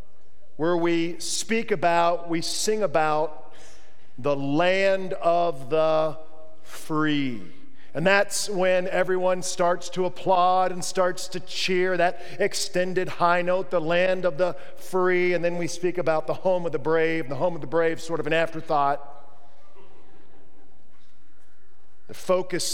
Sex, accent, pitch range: male, American, 145-180 Hz